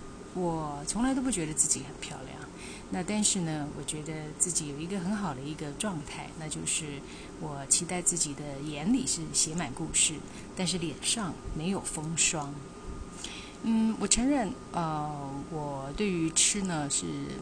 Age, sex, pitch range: 30-49, female, 150-200 Hz